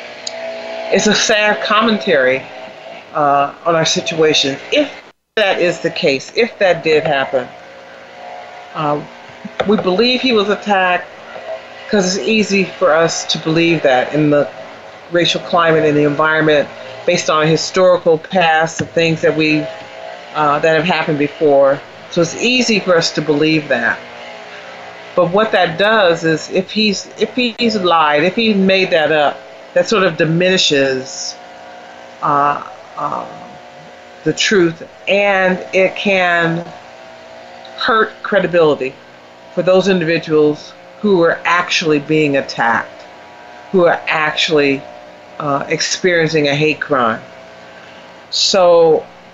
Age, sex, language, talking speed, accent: 40-59, female, English, 125 wpm, American